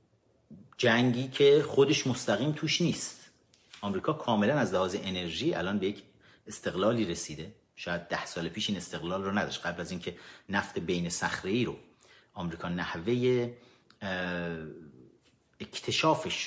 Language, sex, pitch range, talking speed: Persian, male, 95-150 Hz, 125 wpm